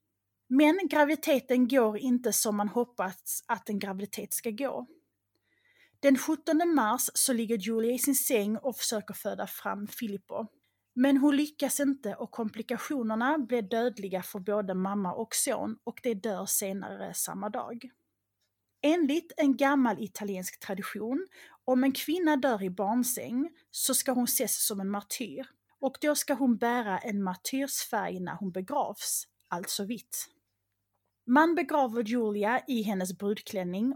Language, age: English, 30-49